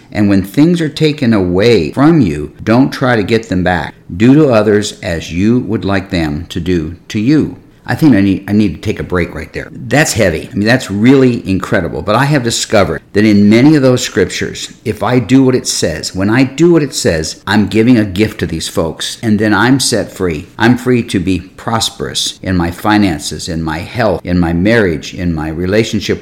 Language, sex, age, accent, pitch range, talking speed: English, male, 50-69, American, 100-135 Hz, 220 wpm